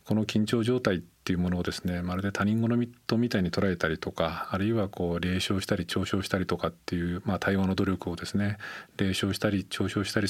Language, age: Japanese, 40-59